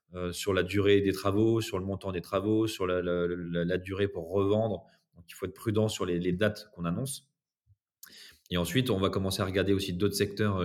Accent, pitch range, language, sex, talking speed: French, 90-105 Hz, French, male, 220 wpm